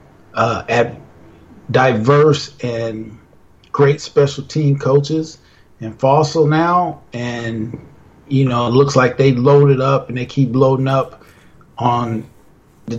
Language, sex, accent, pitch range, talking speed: English, male, American, 120-145 Hz, 125 wpm